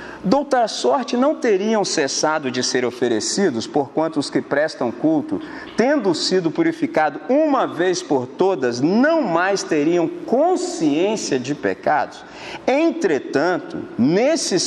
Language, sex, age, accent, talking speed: Portuguese, male, 50-69, Brazilian, 120 wpm